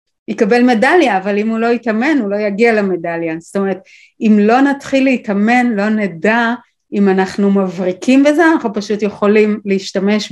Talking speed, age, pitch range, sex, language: 155 wpm, 30-49, 180-220 Hz, female, Hebrew